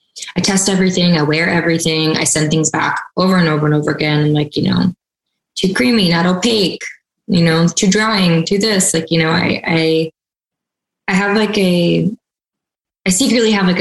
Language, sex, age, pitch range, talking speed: English, female, 20-39, 170-210 Hz, 180 wpm